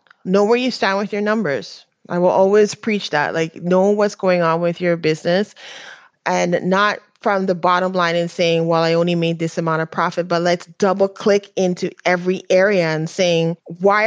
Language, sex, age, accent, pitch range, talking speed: English, female, 30-49, American, 170-205 Hz, 195 wpm